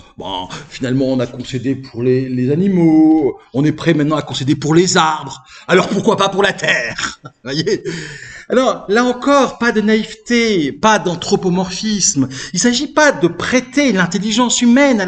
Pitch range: 155-250 Hz